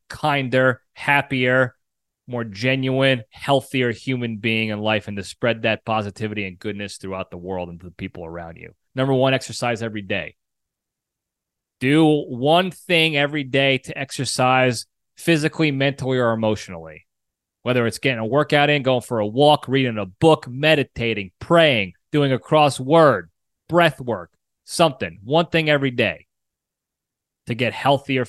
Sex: male